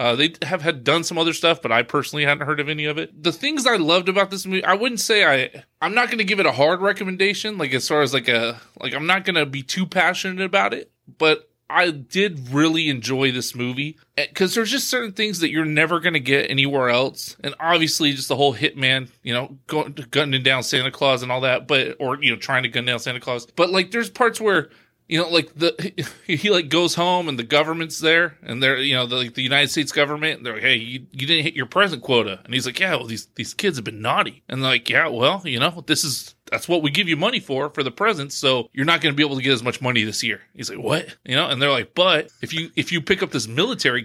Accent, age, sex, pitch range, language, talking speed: American, 20-39, male, 130-175 Hz, English, 270 wpm